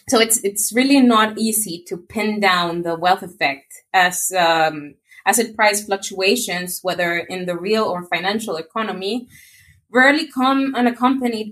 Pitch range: 185-240 Hz